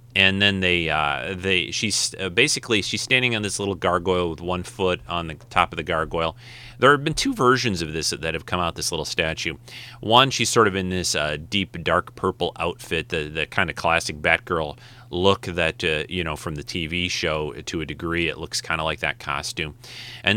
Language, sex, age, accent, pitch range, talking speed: English, male, 30-49, American, 85-115 Hz, 220 wpm